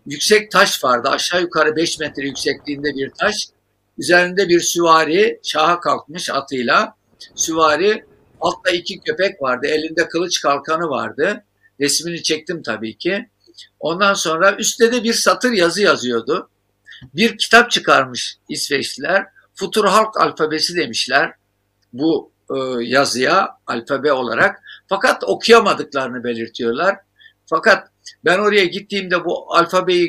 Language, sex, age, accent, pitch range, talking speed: Turkish, male, 60-79, native, 140-195 Hz, 115 wpm